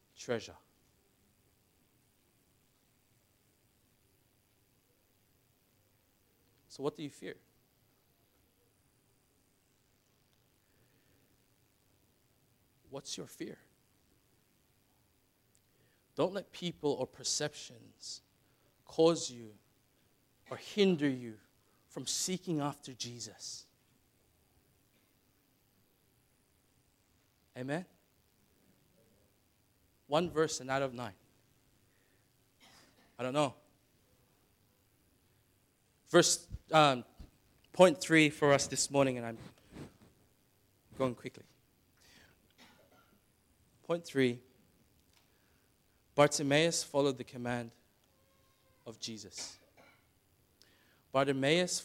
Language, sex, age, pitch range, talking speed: English, male, 50-69, 115-140 Hz, 60 wpm